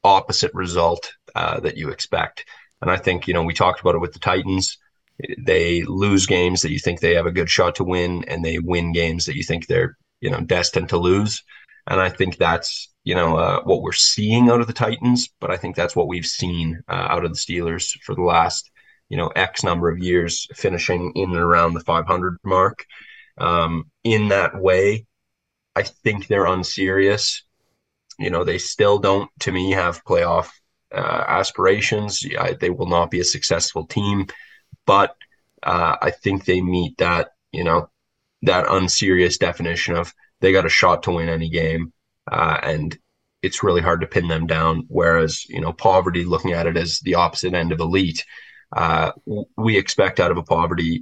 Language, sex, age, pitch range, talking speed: English, male, 20-39, 85-95 Hz, 190 wpm